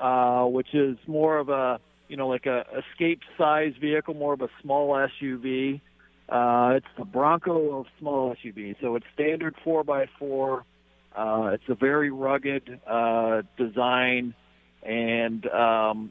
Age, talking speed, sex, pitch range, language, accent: 50-69, 150 wpm, male, 115-135 Hz, English, American